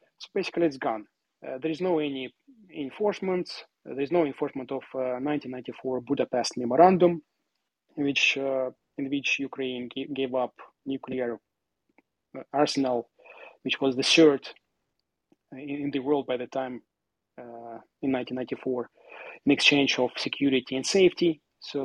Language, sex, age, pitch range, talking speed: English, male, 30-49, 130-155 Hz, 140 wpm